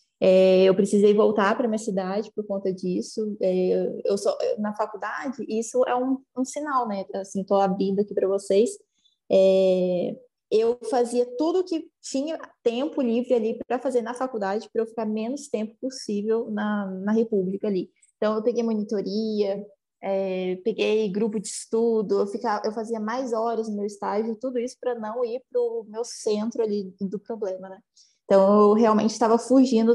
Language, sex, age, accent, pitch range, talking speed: Portuguese, female, 20-39, Brazilian, 200-245 Hz, 175 wpm